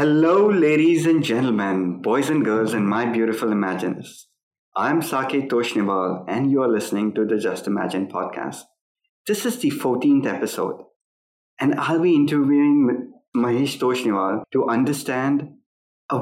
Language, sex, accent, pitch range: English, male, Indian, 110-150 Hz